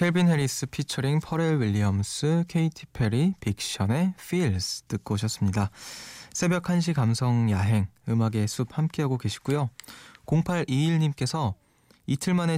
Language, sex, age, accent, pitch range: Korean, male, 20-39, native, 110-145 Hz